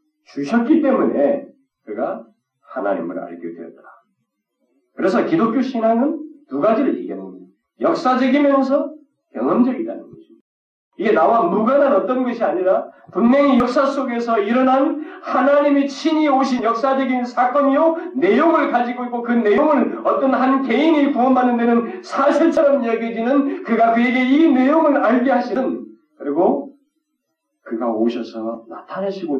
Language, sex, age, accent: Korean, male, 40-59, native